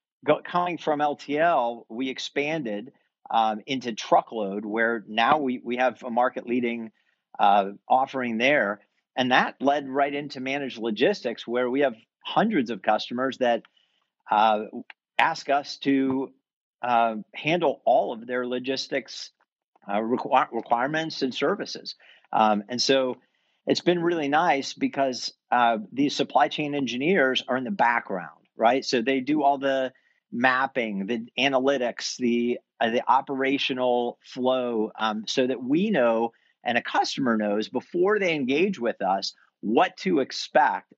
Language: English